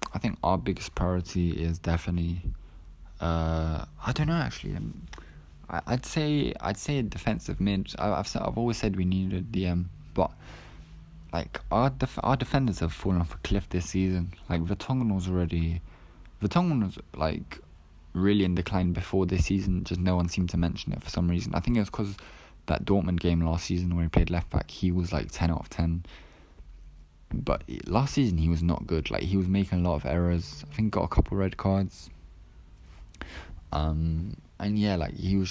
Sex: male